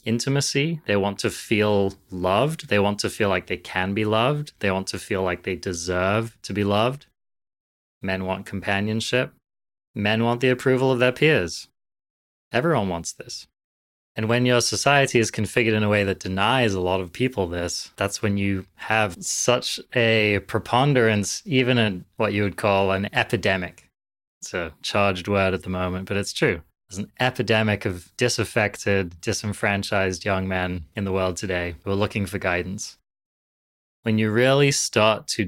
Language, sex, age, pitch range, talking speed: English, male, 20-39, 95-115 Hz, 170 wpm